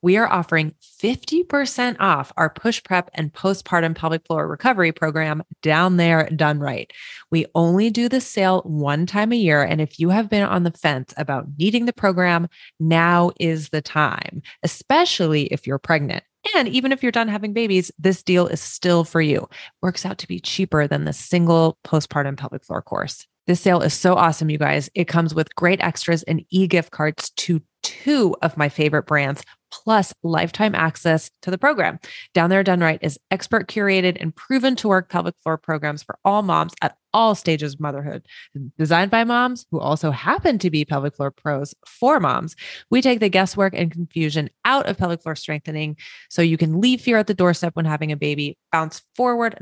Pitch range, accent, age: 155-200 Hz, American, 30-49